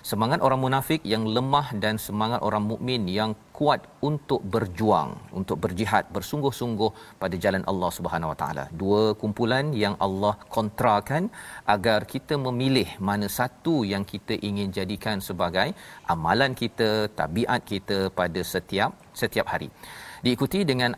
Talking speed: 135 wpm